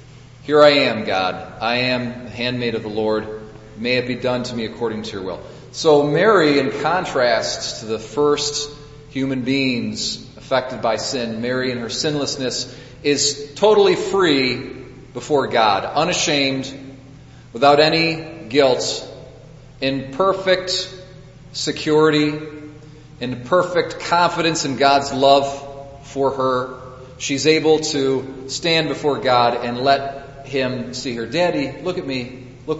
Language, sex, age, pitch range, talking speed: English, male, 40-59, 130-155 Hz, 135 wpm